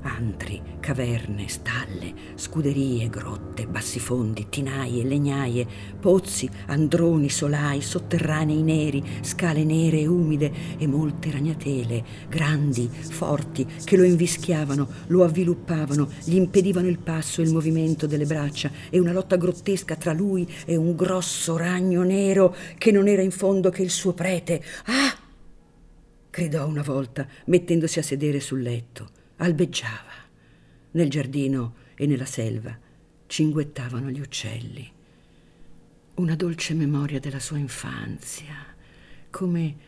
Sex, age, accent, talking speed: female, 50-69, native, 120 wpm